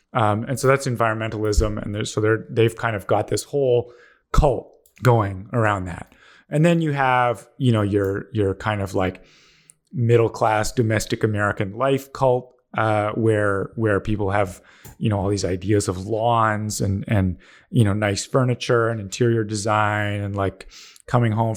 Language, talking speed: English, 170 wpm